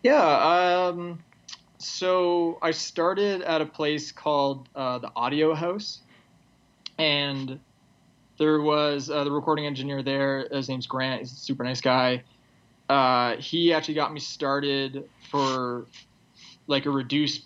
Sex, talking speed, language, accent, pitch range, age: male, 135 wpm, English, American, 130-150 Hz, 20-39